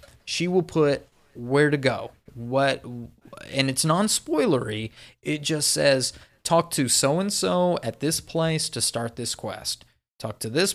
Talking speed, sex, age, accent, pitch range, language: 145 wpm, male, 30-49, American, 120-155 Hz, English